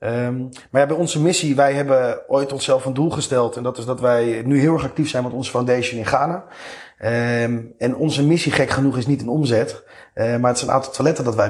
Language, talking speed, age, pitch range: Dutch, 235 wpm, 30-49, 120-140 Hz